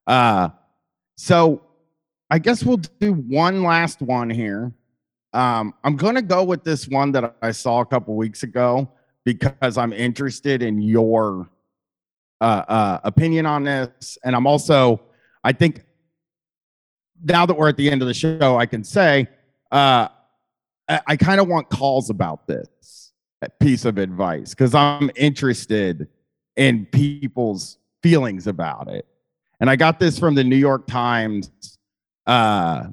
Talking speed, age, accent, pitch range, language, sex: 150 wpm, 30-49, American, 120-165 Hz, English, male